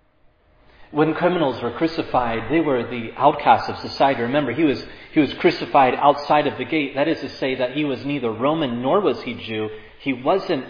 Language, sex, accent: English, male, American